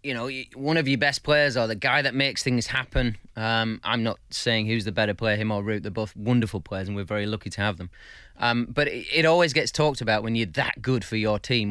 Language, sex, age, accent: English, male, 30-49, British